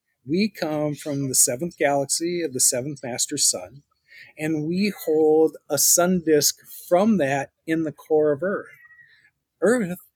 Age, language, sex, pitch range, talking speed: 40-59, English, male, 150-190 Hz, 150 wpm